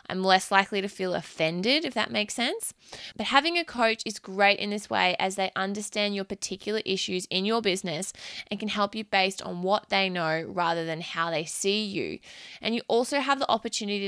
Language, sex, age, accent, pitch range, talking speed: English, female, 20-39, Australian, 190-225 Hz, 210 wpm